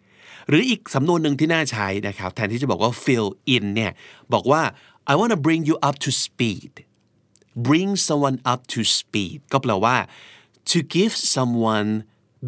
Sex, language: male, Thai